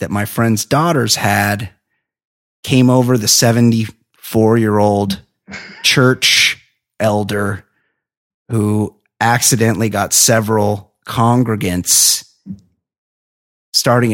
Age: 30-49